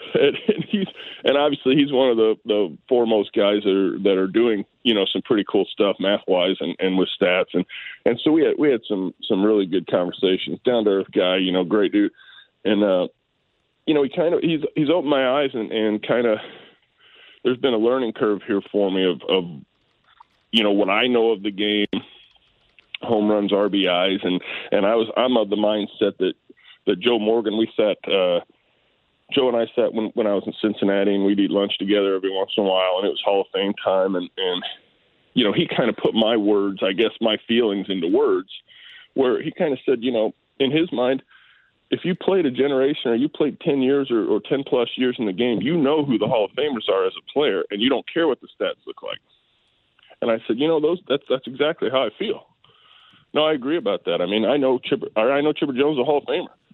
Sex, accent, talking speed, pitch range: male, American, 235 wpm, 100-155 Hz